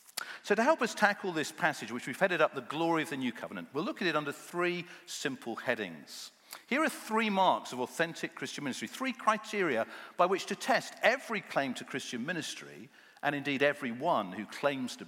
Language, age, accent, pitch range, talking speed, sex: English, 50-69, British, 125-185 Hz, 200 wpm, male